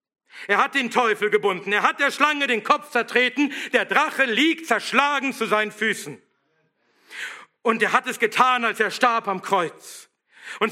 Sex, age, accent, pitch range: male, 50-69, German, 210-265 Hz